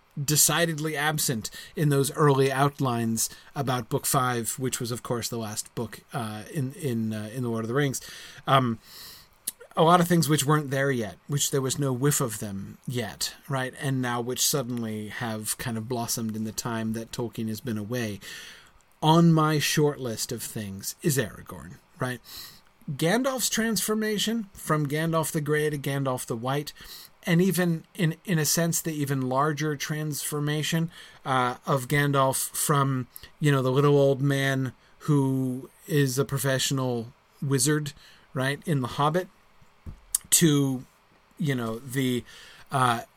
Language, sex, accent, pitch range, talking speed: English, male, American, 125-150 Hz, 155 wpm